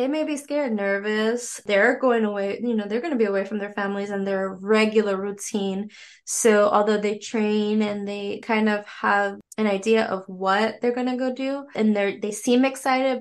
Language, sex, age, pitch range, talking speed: English, female, 20-39, 190-225 Hz, 205 wpm